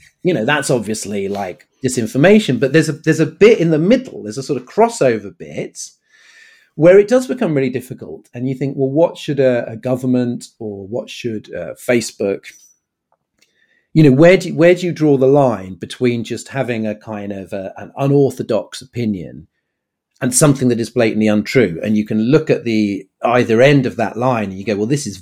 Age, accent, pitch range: 40-59, British, 105-135 Hz